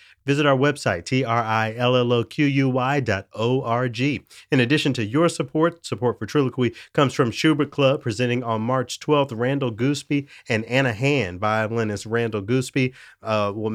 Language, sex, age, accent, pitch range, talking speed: English, male, 30-49, American, 110-135 Hz, 170 wpm